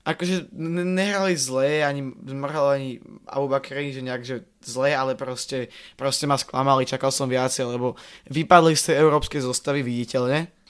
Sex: male